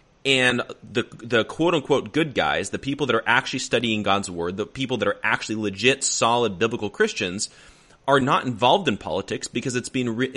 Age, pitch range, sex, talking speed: 30-49, 115-145 Hz, male, 185 wpm